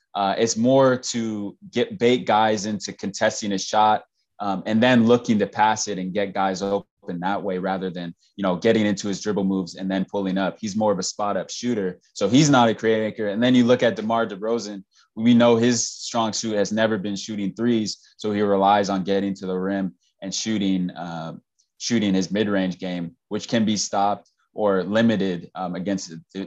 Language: English